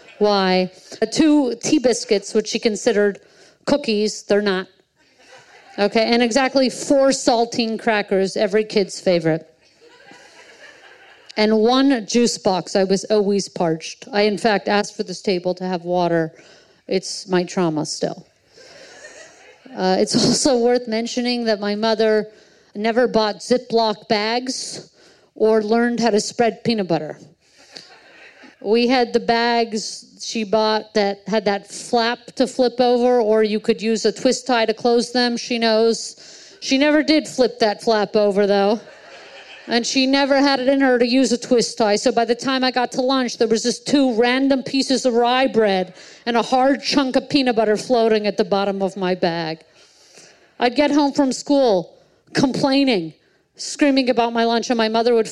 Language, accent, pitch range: English, American, 205-255 Hz